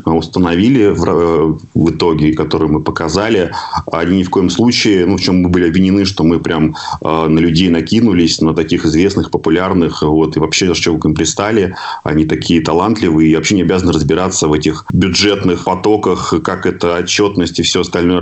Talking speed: 180 wpm